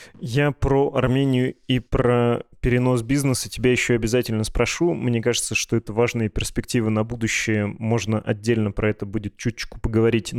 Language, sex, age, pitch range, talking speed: Russian, male, 20-39, 105-125 Hz, 150 wpm